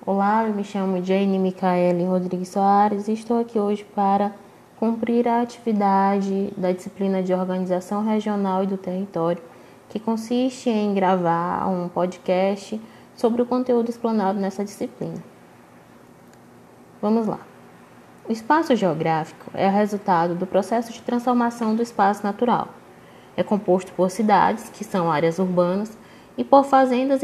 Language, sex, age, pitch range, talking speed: Portuguese, female, 20-39, 195-245 Hz, 135 wpm